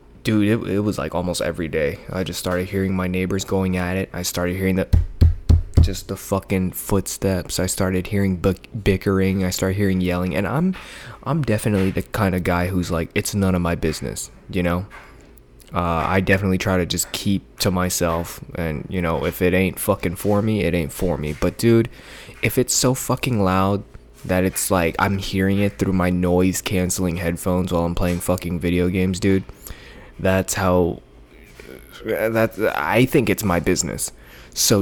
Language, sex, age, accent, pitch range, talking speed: English, male, 20-39, American, 85-100 Hz, 180 wpm